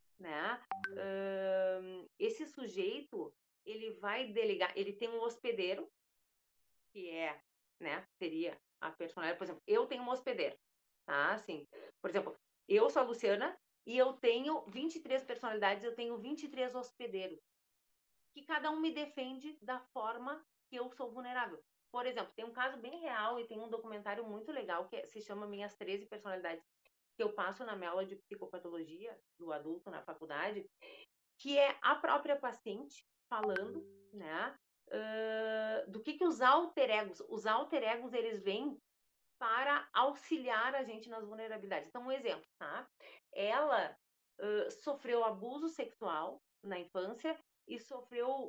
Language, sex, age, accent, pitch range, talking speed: Portuguese, female, 30-49, Brazilian, 200-280 Hz, 145 wpm